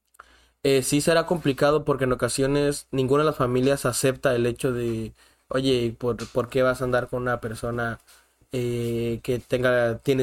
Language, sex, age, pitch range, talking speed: Spanish, male, 20-39, 120-135 Hz, 170 wpm